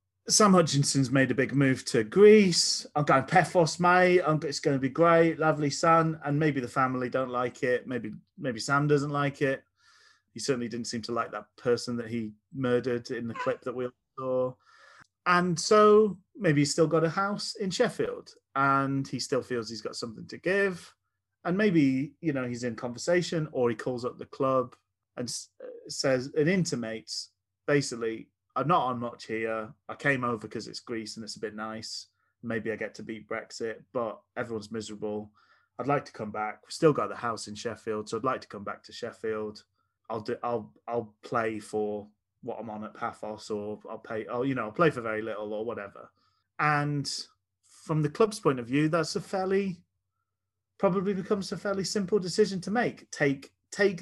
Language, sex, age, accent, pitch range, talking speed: English, male, 30-49, British, 110-165 Hz, 195 wpm